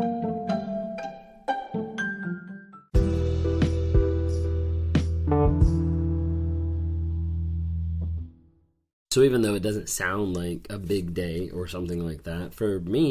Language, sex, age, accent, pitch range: English, male, 30-49, American, 85-110 Hz